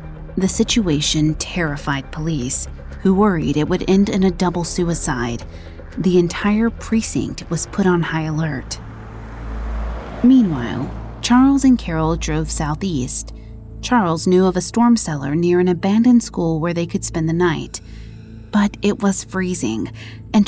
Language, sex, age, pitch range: English, female, 30-49, 140-200 Hz